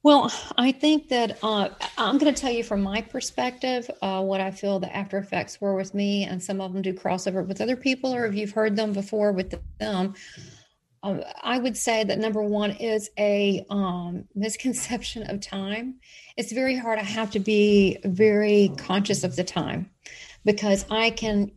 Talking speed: 190 wpm